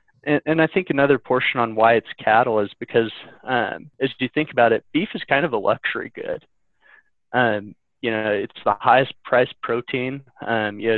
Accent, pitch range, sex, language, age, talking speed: American, 115-140 Hz, male, English, 20-39, 195 wpm